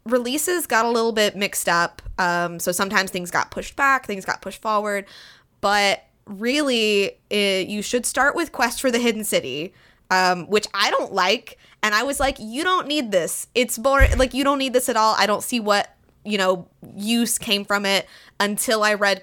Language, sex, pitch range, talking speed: English, female, 185-230 Hz, 200 wpm